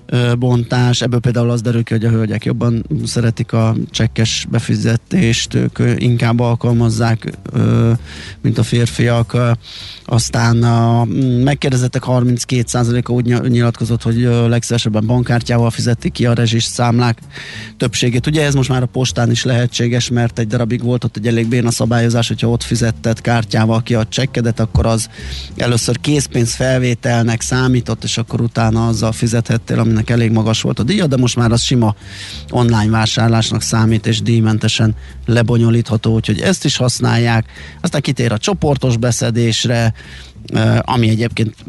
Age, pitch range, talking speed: 20-39, 110-120 Hz, 140 wpm